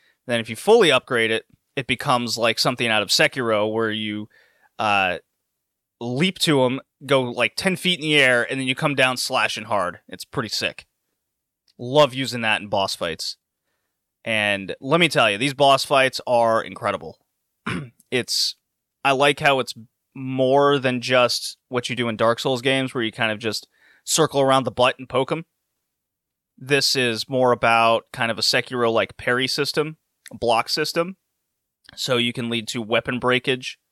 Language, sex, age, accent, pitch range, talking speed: English, male, 30-49, American, 110-135 Hz, 175 wpm